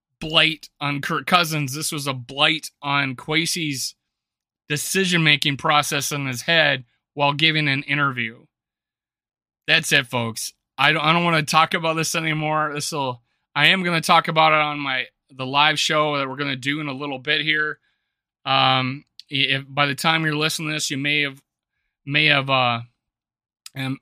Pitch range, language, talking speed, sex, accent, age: 130-155 Hz, English, 185 wpm, male, American, 30-49